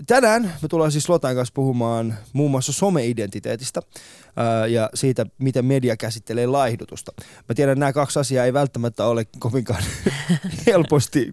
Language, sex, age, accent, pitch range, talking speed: Finnish, male, 20-39, native, 115-155 Hz, 145 wpm